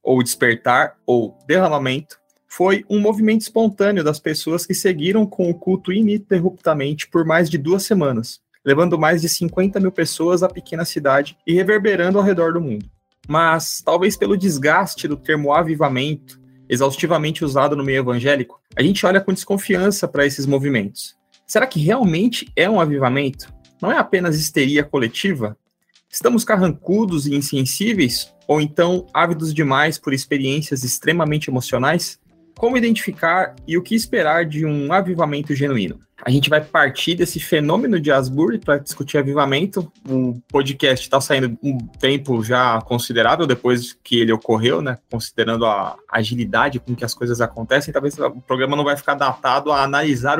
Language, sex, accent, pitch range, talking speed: Portuguese, male, Brazilian, 135-185 Hz, 155 wpm